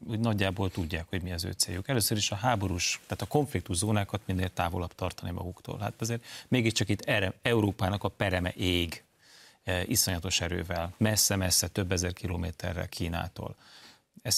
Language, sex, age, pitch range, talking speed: Hungarian, male, 30-49, 90-110 Hz, 160 wpm